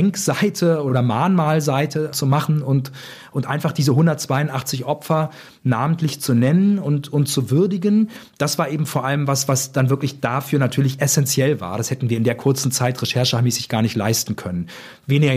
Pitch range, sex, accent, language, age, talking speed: 125-150 Hz, male, German, German, 40-59, 170 wpm